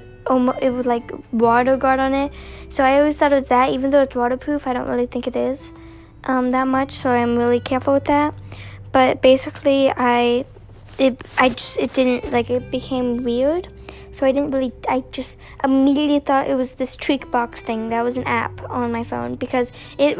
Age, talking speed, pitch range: 10-29, 200 wpm, 240-275 Hz